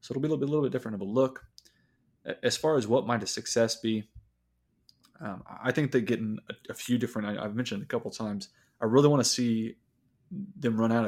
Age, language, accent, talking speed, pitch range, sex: 20-39, English, American, 240 wpm, 105-120 Hz, male